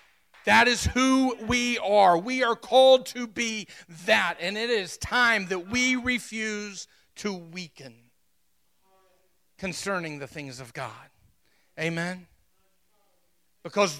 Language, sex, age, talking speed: English, male, 40-59, 115 wpm